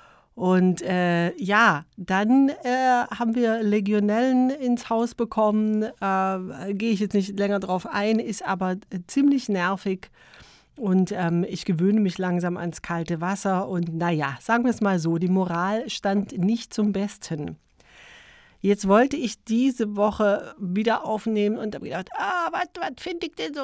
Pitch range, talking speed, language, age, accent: 185-225 Hz, 155 wpm, German, 40-59, German